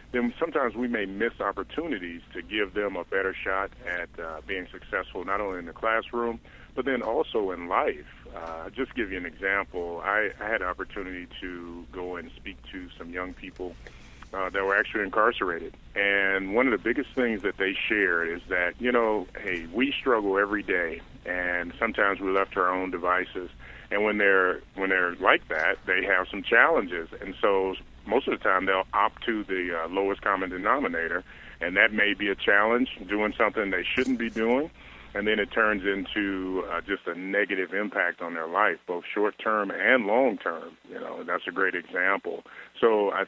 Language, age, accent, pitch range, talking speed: English, 40-59, American, 85-105 Hz, 190 wpm